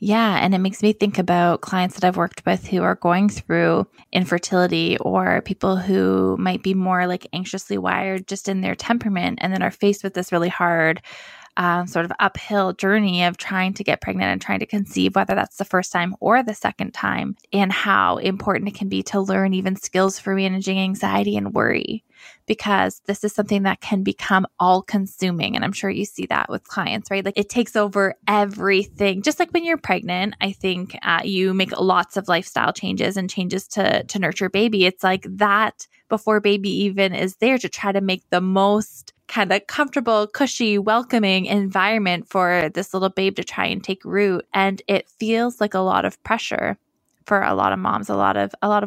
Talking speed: 200 wpm